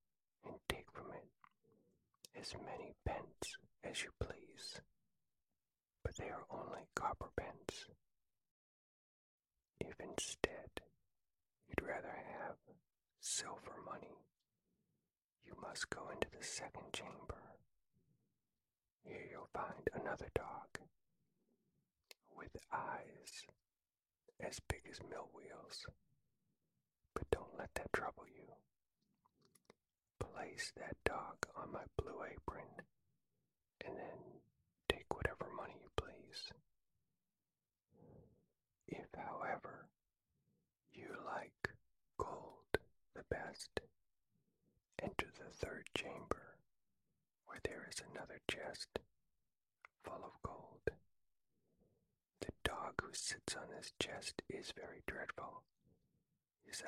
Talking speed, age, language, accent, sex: 95 wpm, 40-59, English, American, male